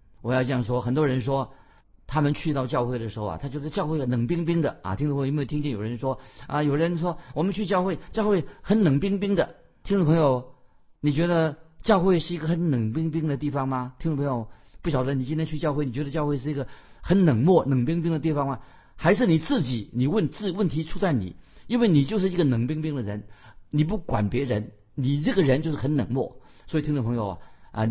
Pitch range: 115-155 Hz